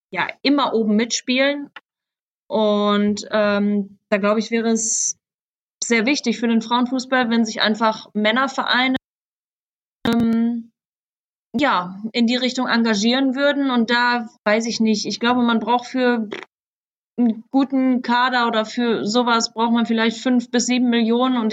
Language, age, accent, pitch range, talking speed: German, 20-39, German, 210-245 Hz, 140 wpm